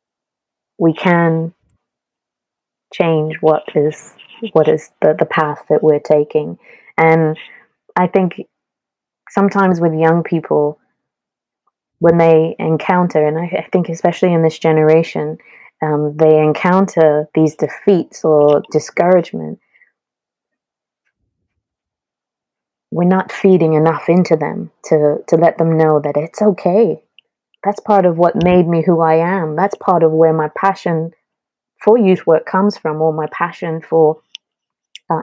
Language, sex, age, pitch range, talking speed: English, female, 20-39, 155-190 Hz, 130 wpm